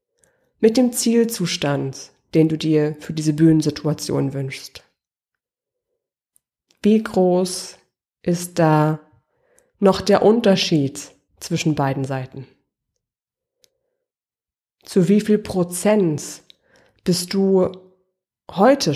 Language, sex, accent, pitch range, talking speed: German, female, German, 155-215 Hz, 85 wpm